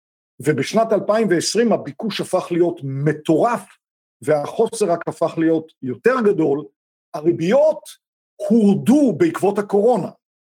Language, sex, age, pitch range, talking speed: Hebrew, male, 50-69, 170-220 Hz, 90 wpm